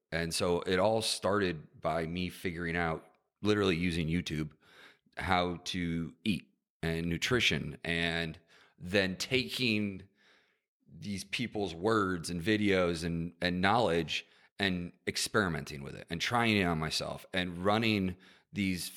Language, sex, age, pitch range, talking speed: English, male, 30-49, 85-100 Hz, 125 wpm